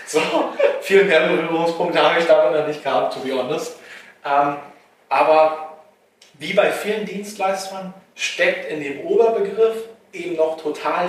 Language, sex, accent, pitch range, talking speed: German, male, German, 135-170 Hz, 135 wpm